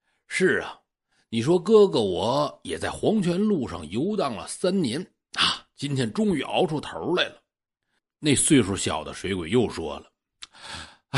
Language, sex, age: Chinese, male, 60-79